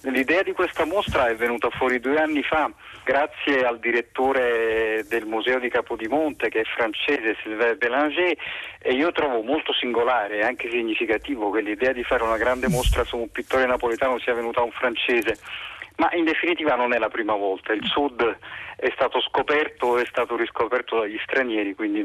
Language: Italian